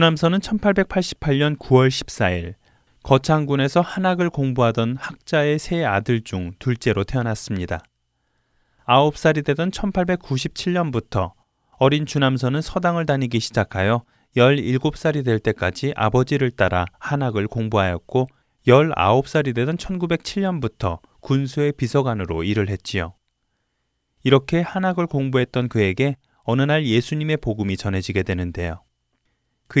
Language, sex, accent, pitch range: Korean, male, native, 105-150 Hz